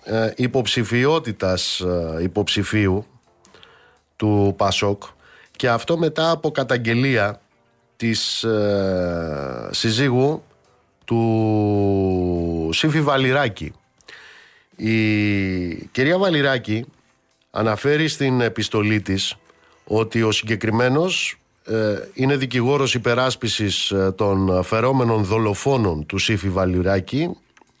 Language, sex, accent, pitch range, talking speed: Greek, male, native, 100-130 Hz, 75 wpm